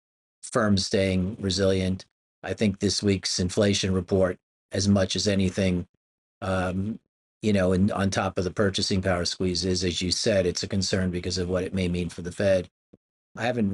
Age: 40-59